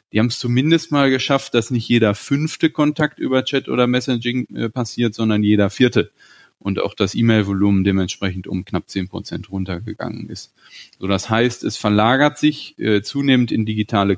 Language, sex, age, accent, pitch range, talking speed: German, male, 30-49, German, 100-120 Hz, 170 wpm